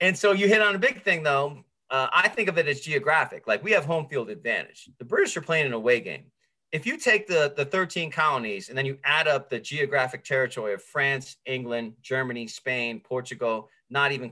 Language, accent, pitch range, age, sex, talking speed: English, American, 130-205 Hz, 30-49, male, 220 wpm